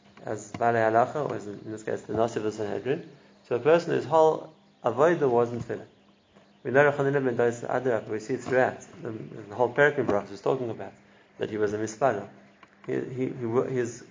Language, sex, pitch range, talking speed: English, male, 120-140 Hz, 175 wpm